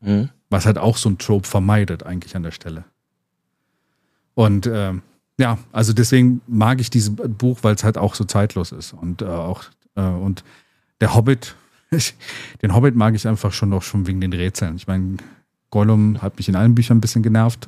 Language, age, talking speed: German, 40-59, 190 wpm